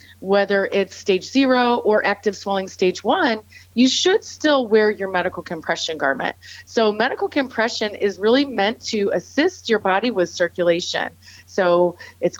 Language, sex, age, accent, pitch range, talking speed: English, female, 30-49, American, 180-260 Hz, 150 wpm